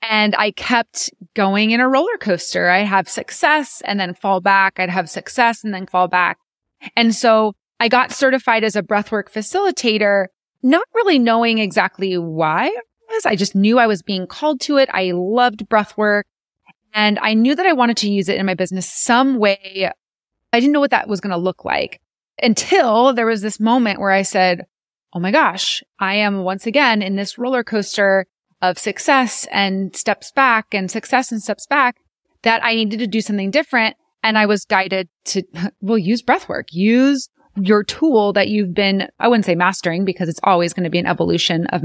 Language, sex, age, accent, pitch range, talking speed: English, female, 20-39, American, 190-235 Hz, 195 wpm